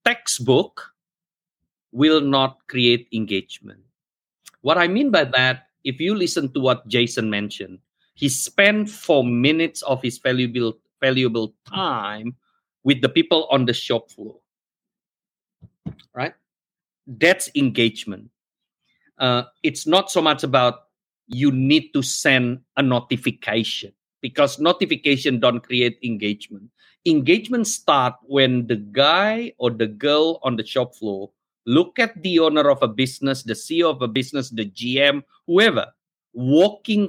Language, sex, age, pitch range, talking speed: English, male, 50-69, 120-170 Hz, 130 wpm